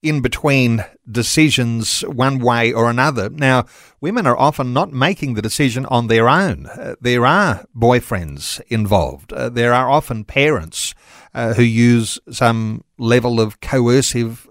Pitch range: 115-140 Hz